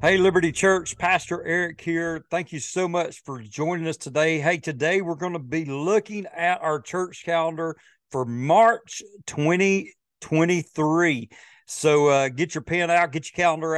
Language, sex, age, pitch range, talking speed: English, male, 40-59, 140-170 Hz, 155 wpm